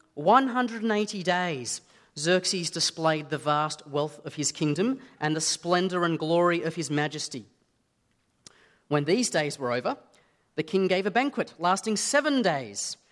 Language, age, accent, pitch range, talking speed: English, 30-49, Australian, 145-190 Hz, 140 wpm